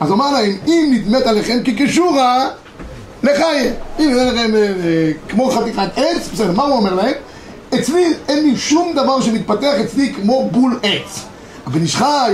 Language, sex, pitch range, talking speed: Hebrew, male, 200-255 Hz, 165 wpm